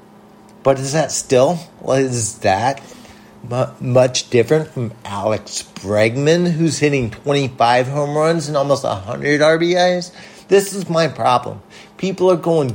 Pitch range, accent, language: 115-155 Hz, American, English